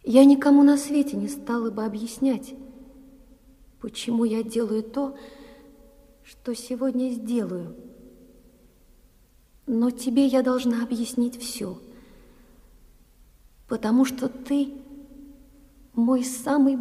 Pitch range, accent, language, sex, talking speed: 230-275 Hz, native, Russian, female, 95 wpm